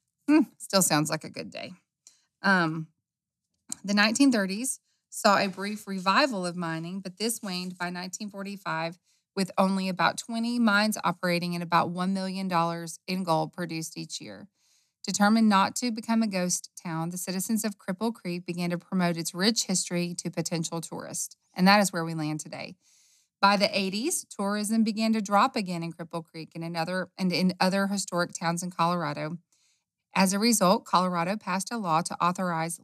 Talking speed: 170 wpm